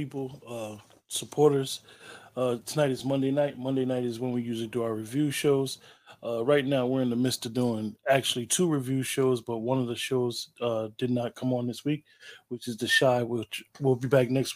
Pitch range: 125-145 Hz